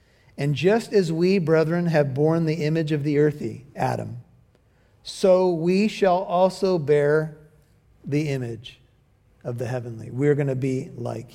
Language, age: English, 50-69